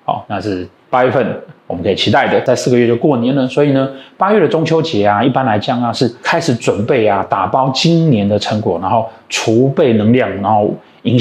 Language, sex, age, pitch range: Chinese, male, 20-39, 110-145 Hz